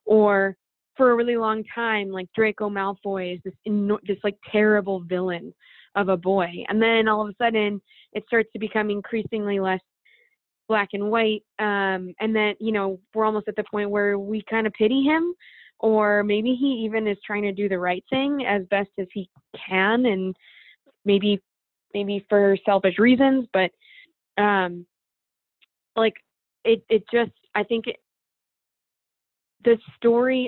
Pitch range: 195-220 Hz